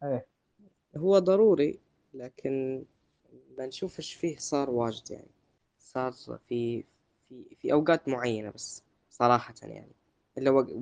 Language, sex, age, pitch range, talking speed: Arabic, female, 10-29, 120-140 Hz, 110 wpm